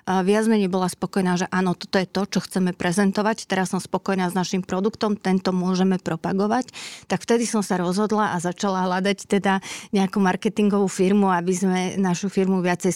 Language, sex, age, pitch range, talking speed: Slovak, female, 30-49, 185-205 Hz, 175 wpm